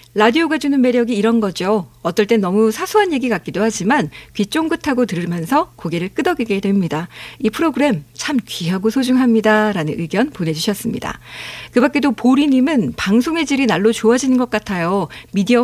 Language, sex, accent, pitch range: Korean, female, native, 200-280 Hz